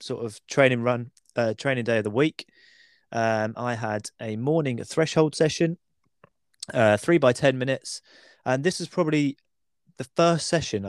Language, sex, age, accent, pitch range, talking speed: English, male, 20-39, British, 110-140 Hz, 160 wpm